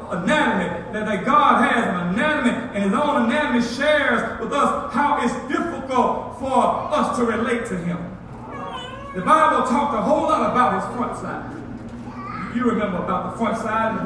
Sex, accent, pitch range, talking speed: male, American, 220-290 Hz, 175 wpm